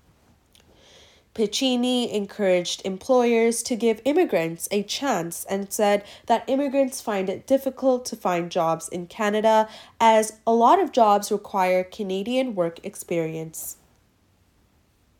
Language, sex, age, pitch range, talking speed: English, female, 20-39, 170-235 Hz, 115 wpm